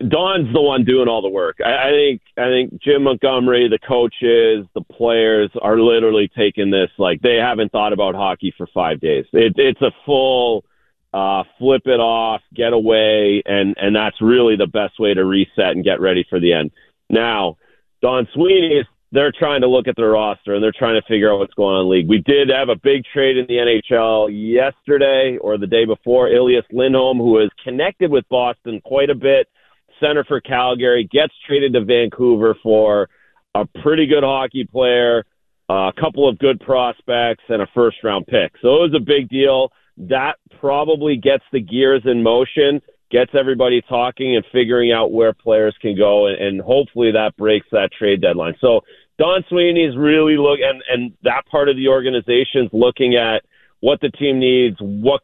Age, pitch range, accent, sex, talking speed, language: 40-59, 110-135 Hz, American, male, 190 wpm, English